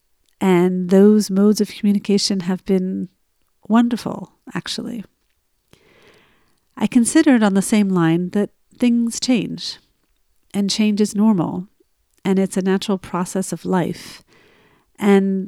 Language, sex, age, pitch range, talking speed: English, female, 50-69, 180-215 Hz, 115 wpm